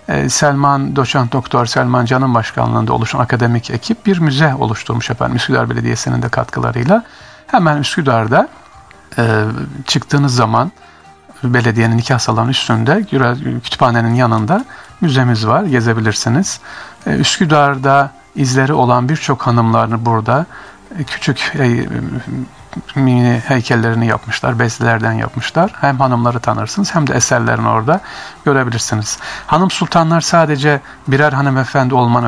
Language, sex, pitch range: Turkish, male, 115-140 Hz